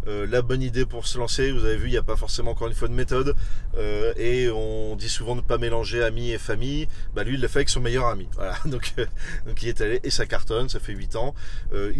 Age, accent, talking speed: 30-49, French, 280 wpm